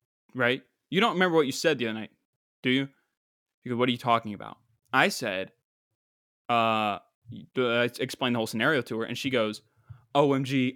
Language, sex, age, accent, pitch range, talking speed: English, male, 10-29, American, 120-160 Hz, 185 wpm